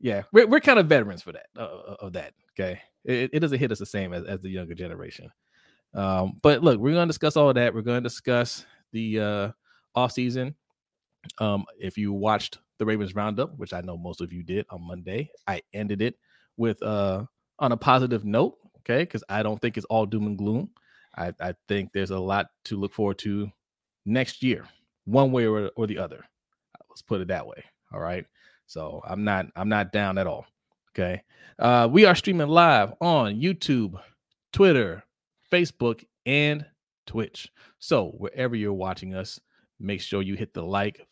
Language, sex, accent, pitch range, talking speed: English, male, American, 100-130 Hz, 190 wpm